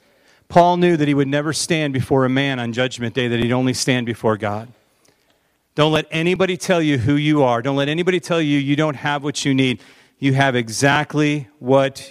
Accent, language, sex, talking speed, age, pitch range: American, English, male, 210 wpm, 40-59, 135-170 Hz